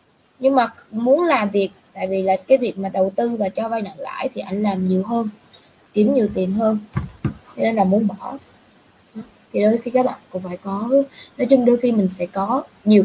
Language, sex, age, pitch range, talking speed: Vietnamese, female, 20-39, 190-260 Hz, 220 wpm